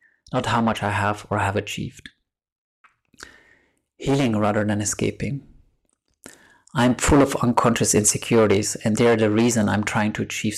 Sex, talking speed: male, 140 wpm